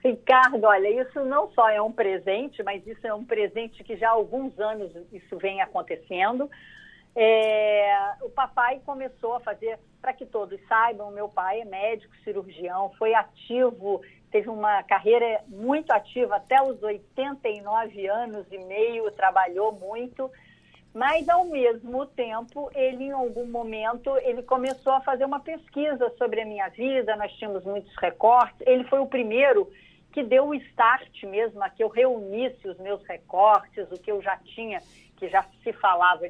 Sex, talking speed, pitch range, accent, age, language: female, 160 wpm, 205-260 Hz, Brazilian, 50-69, Portuguese